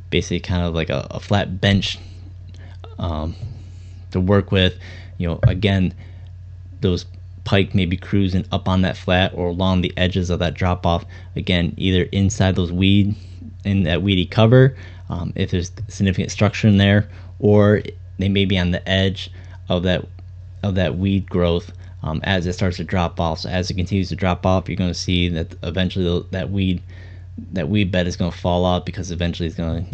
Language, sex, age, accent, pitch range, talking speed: English, male, 20-39, American, 90-100 Hz, 195 wpm